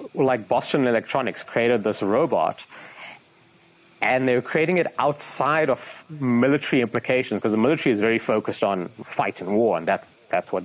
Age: 30-49